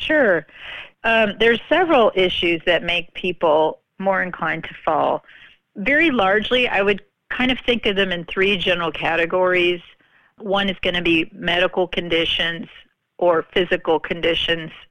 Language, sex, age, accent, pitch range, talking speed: English, female, 40-59, American, 175-205 Hz, 140 wpm